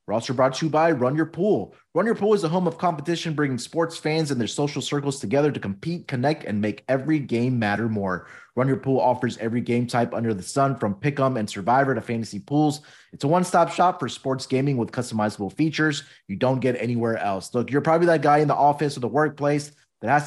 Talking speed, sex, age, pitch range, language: 235 wpm, male, 30-49, 115-155 Hz, English